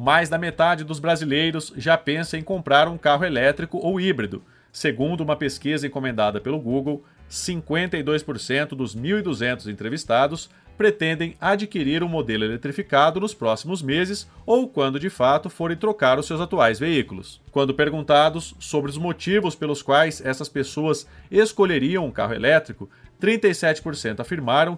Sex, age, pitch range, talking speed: male, 30-49, 135-180 Hz, 140 wpm